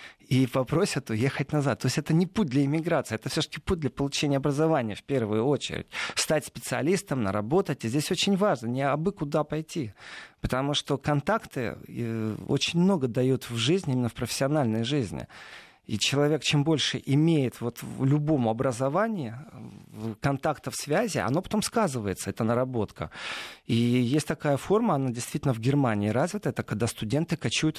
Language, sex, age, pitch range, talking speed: Russian, male, 40-59, 115-155 Hz, 155 wpm